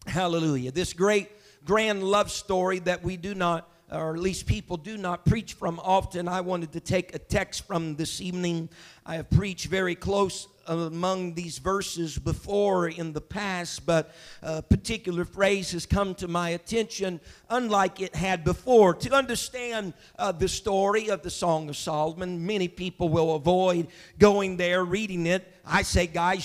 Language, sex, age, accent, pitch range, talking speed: English, male, 50-69, American, 170-225 Hz, 170 wpm